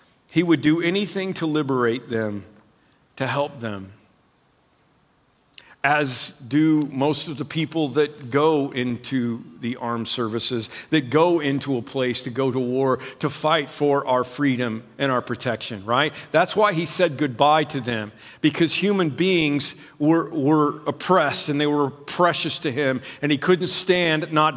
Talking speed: 155 wpm